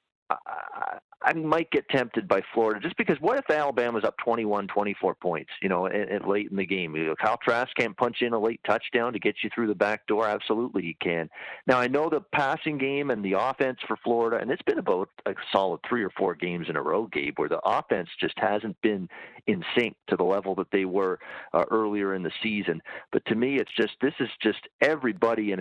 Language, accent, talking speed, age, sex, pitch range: English, American, 225 wpm, 50-69, male, 95-115 Hz